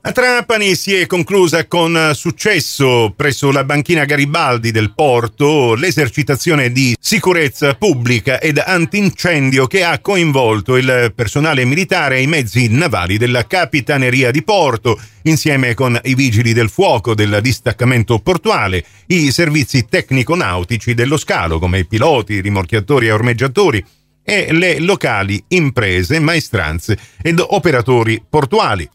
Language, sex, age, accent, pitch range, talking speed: Italian, male, 40-59, native, 110-150 Hz, 130 wpm